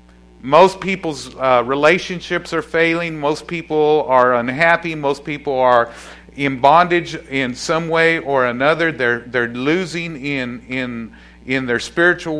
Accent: American